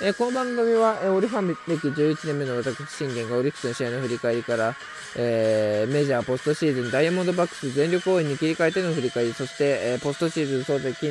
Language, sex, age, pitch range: Japanese, male, 20-39, 125-185 Hz